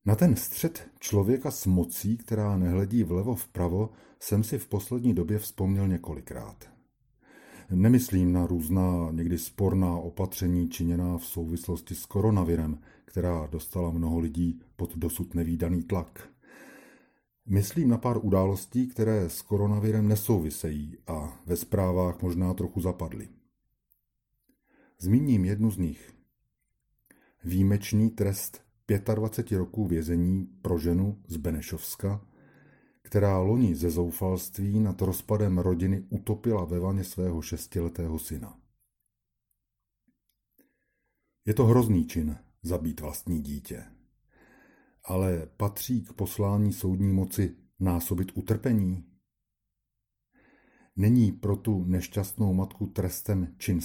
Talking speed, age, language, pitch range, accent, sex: 110 wpm, 40-59, Czech, 85-105 Hz, native, male